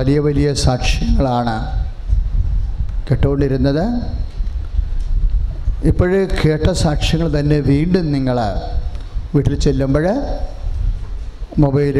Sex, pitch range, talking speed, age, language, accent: male, 115-180 Hz, 85 wpm, 50-69, English, Indian